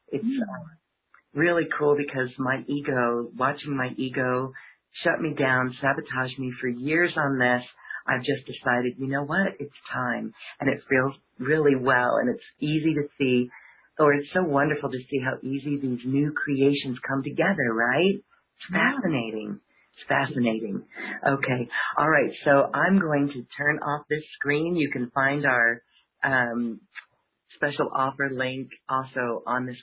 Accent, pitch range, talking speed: American, 125-155 Hz, 155 wpm